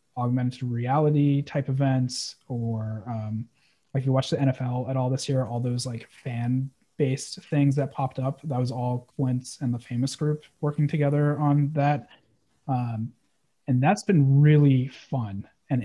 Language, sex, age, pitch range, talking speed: English, male, 30-49, 125-145 Hz, 165 wpm